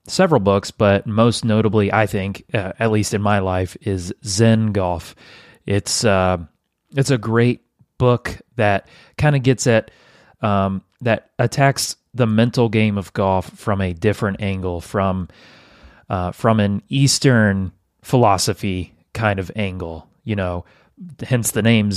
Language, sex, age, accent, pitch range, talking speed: English, male, 30-49, American, 95-115 Hz, 145 wpm